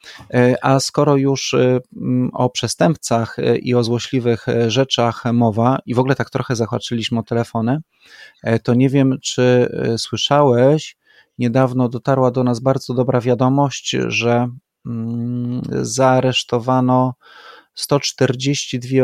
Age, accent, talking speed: 30-49, native, 105 wpm